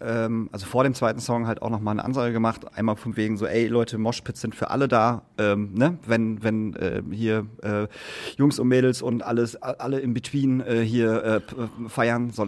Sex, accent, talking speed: male, German, 210 wpm